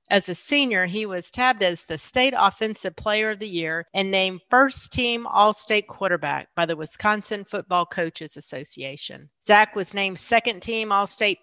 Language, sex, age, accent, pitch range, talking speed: English, female, 40-59, American, 170-210 Hz, 160 wpm